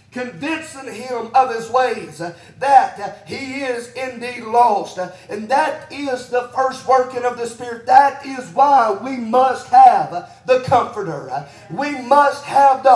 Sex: male